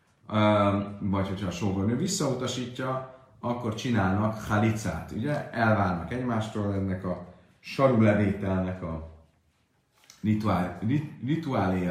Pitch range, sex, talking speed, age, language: 100-120 Hz, male, 85 wpm, 30-49, Hungarian